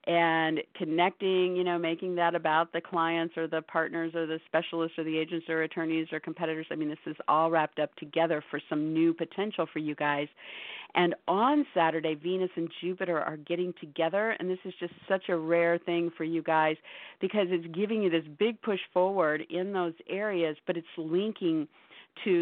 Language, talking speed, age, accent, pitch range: English, 195 wpm, 50-69, American, 160-185 Hz